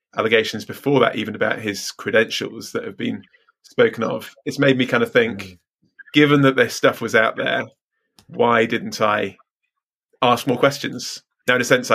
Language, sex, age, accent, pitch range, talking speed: English, male, 20-39, British, 110-130 Hz, 175 wpm